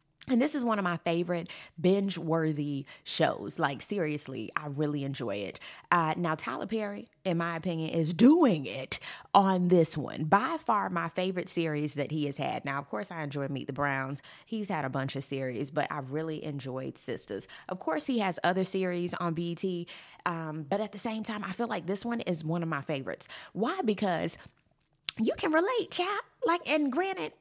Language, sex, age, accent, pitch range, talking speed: English, female, 20-39, American, 155-235 Hz, 195 wpm